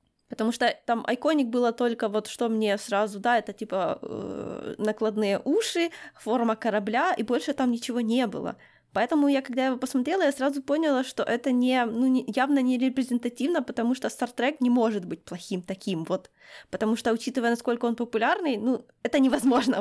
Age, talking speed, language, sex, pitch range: 20-39, 175 wpm, Ukrainian, female, 225-270 Hz